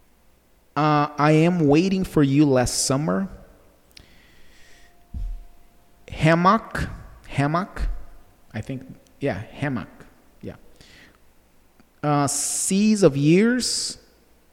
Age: 30-49